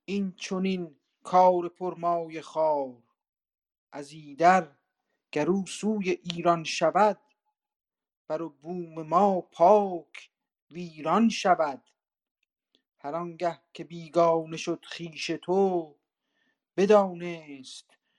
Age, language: 50-69, Persian